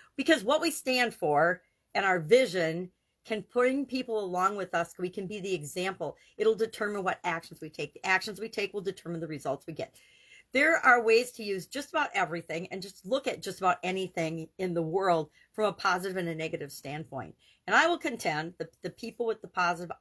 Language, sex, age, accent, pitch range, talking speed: English, female, 50-69, American, 170-215 Hz, 210 wpm